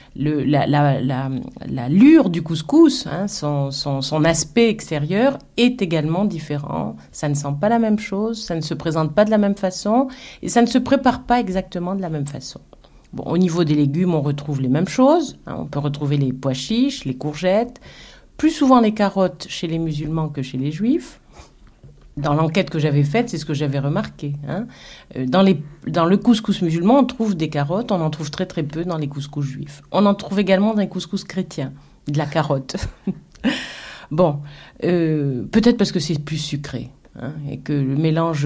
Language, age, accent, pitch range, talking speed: French, 50-69, French, 145-200 Hz, 200 wpm